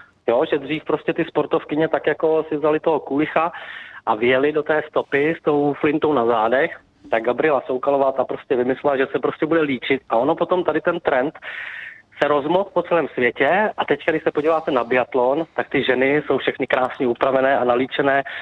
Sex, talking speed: male, 190 wpm